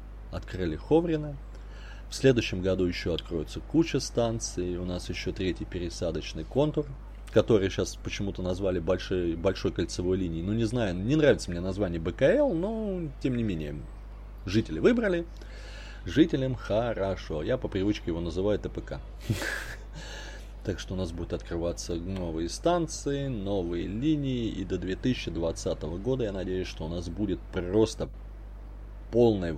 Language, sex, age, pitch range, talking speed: Russian, male, 30-49, 90-110 Hz, 135 wpm